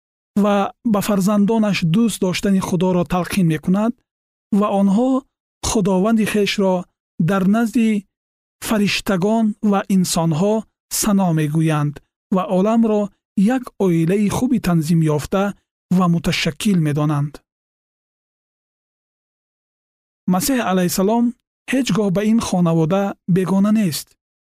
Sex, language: male, Persian